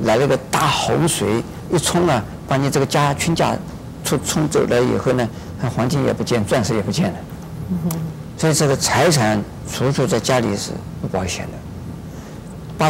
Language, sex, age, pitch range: Chinese, male, 50-69, 120-165 Hz